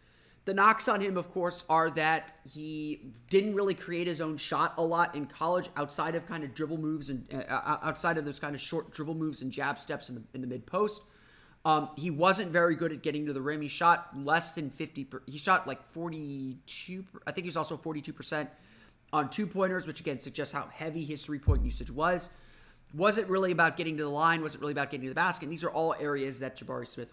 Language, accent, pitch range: English, American, 140-165 Hz